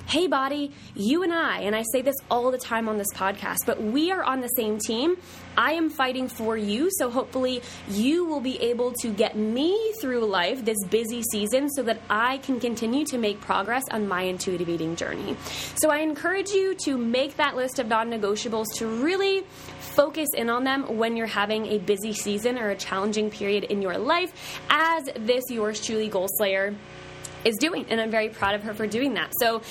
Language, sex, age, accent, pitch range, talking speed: English, female, 20-39, American, 215-275 Hz, 205 wpm